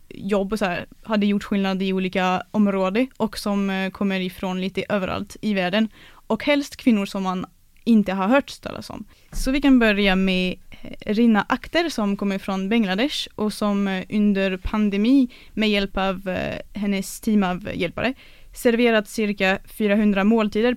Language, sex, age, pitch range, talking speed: English, female, 20-39, 195-235 Hz, 155 wpm